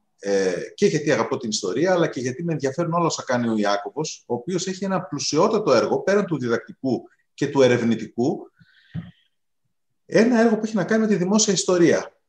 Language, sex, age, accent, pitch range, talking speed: Greek, male, 30-49, native, 120-180 Hz, 180 wpm